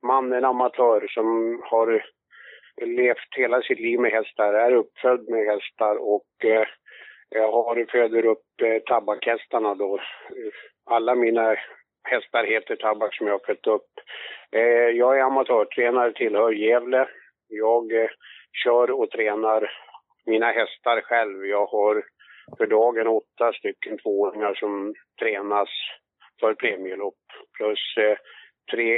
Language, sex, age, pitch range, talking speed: Swedish, male, 50-69, 110-145 Hz, 130 wpm